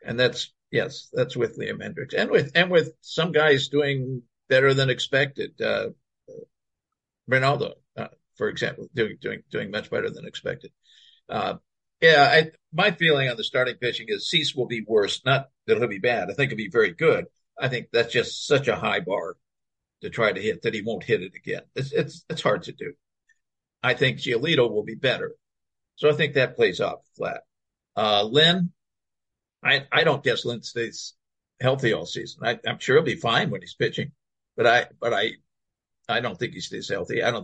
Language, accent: English, American